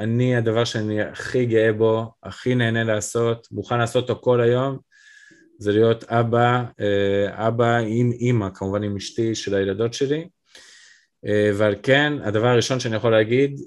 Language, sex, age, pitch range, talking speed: Hebrew, male, 20-39, 100-125 Hz, 145 wpm